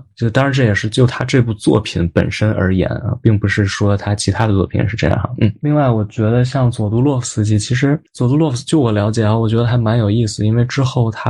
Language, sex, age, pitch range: Chinese, male, 20-39, 105-125 Hz